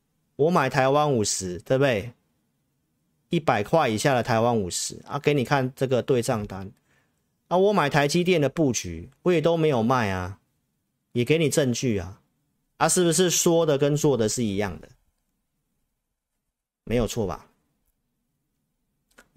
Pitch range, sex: 120-170 Hz, male